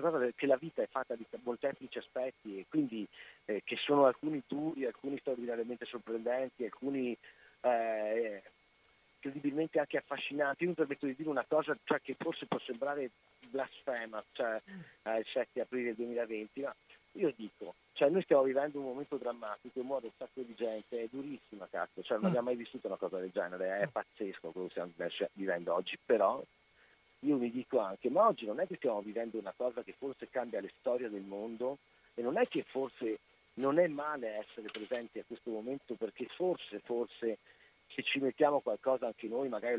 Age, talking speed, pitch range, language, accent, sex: 40-59, 180 wpm, 115-140 Hz, Italian, native, male